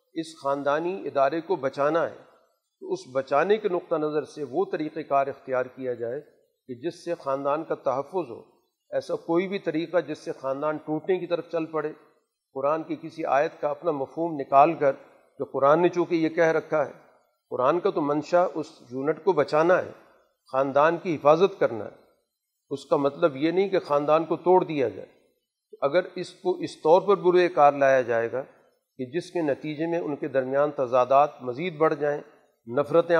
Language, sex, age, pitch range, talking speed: Urdu, male, 50-69, 140-175 Hz, 190 wpm